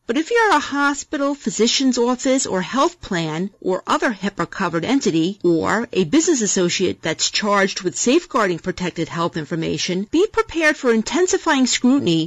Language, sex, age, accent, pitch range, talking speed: English, female, 40-59, American, 185-280 Hz, 145 wpm